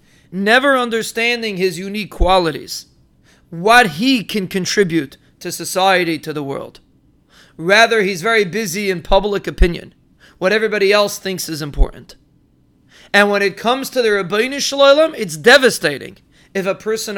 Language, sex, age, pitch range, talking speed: English, male, 30-49, 185-230 Hz, 135 wpm